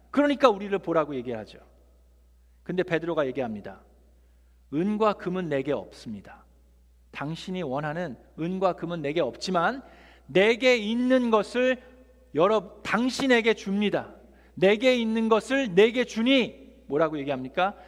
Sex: male